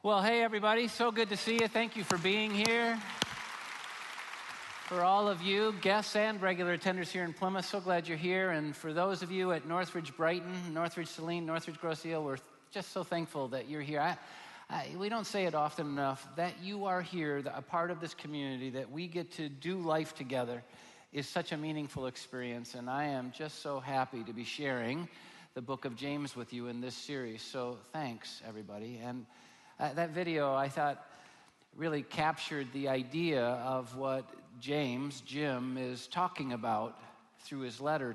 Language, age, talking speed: English, 50-69, 180 wpm